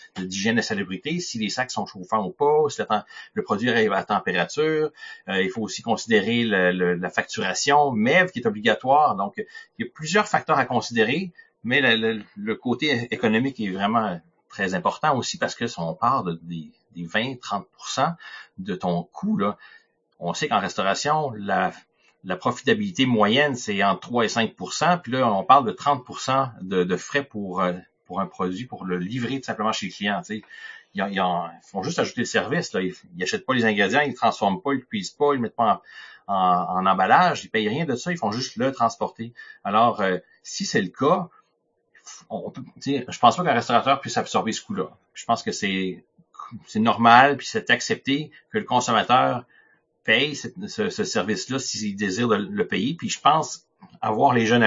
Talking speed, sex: 205 wpm, male